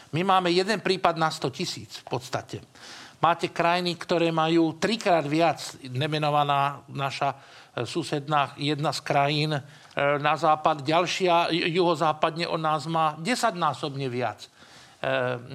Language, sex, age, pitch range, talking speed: Slovak, male, 50-69, 140-180 Hz, 130 wpm